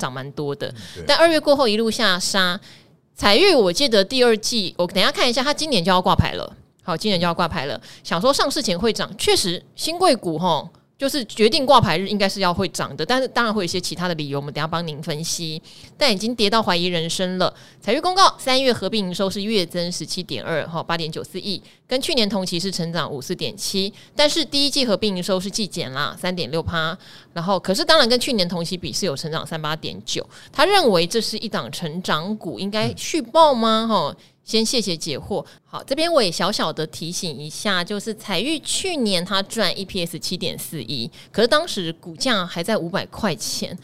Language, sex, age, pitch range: Chinese, female, 20-39, 170-230 Hz